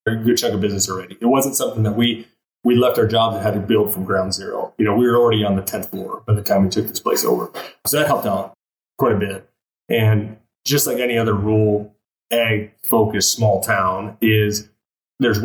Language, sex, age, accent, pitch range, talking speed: English, male, 20-39, American, 105-115 Hz, 220 wpm